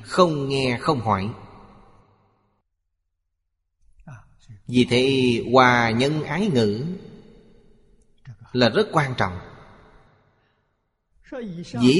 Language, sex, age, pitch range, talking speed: Vietnamese, male, 30-49, 110-145 Hz, 75 wpm